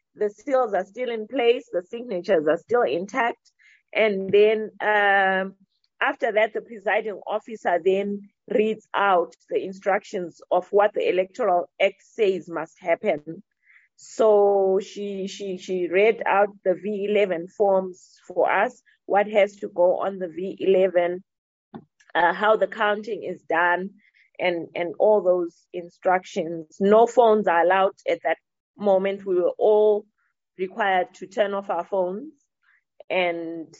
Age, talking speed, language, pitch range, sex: 30-49, 140 wpm, English, 185-220 Hz, female